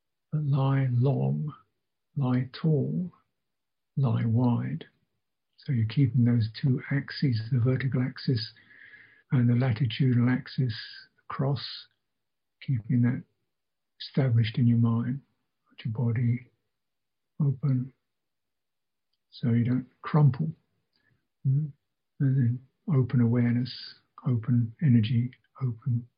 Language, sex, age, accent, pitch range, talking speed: English, male, 60-79, British, 120-140 Hz, 95 wpm